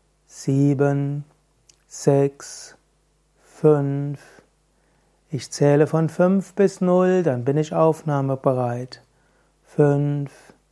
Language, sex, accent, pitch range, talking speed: German, male, German, 135-160 Hz, 80 wpm